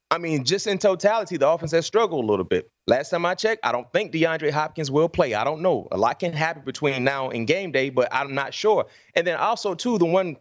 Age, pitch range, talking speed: 30-49, 135-200 Hz, 260 wpm